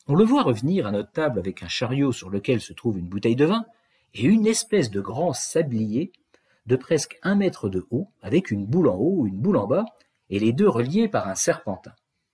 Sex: male